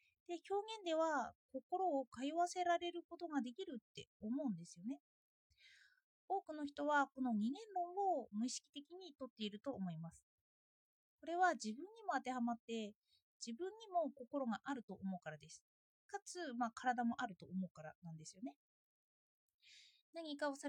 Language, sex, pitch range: Japanese, female, 225-335 Hz